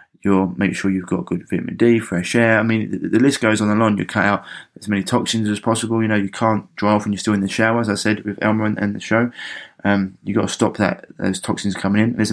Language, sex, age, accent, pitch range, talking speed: English, male, 20-39, British, 95-110 Hz, 285 wpm